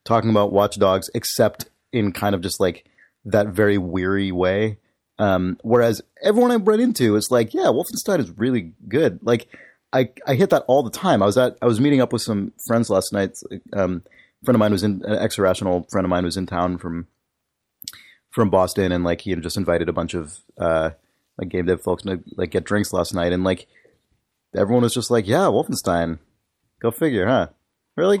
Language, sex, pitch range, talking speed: English, male, 95-120 Hz, 205 wpm